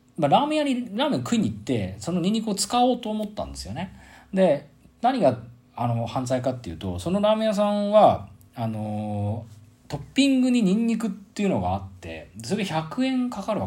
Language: Japanese